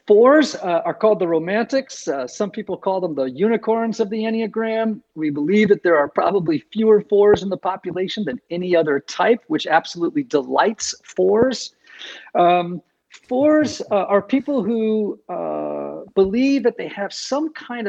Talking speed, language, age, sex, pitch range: 160 wpm, English, 50-69, male, 180-235 Hz